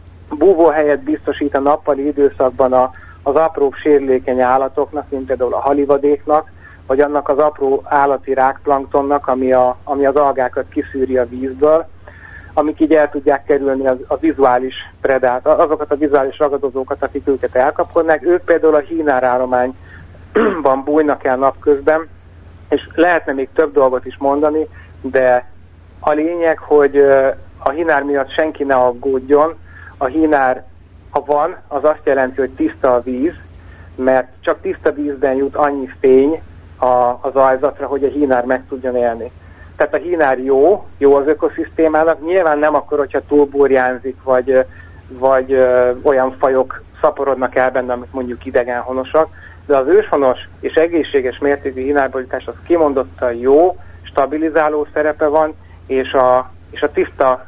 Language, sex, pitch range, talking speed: Hungarian, male, 125-150 Hz, 145 wpm